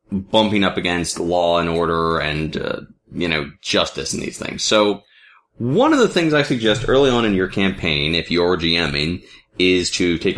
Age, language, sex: 20-39, English, male